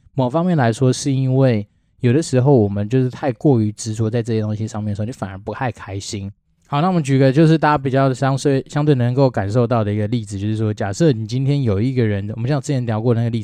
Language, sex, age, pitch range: Chinese, male, 20-39, 105-130 Hz